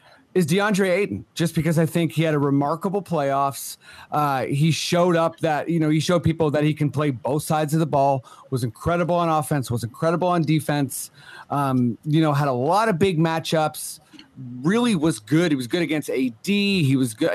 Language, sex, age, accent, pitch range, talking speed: English, male, 30-49, American, 135-165 Hz, 205 wpm